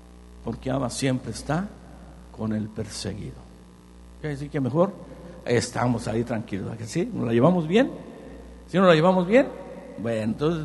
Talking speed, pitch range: 150 wpm, 115-155 Hz